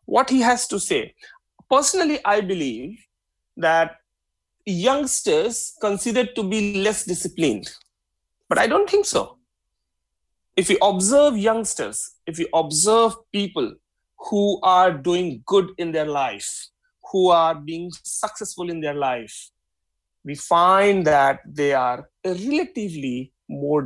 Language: English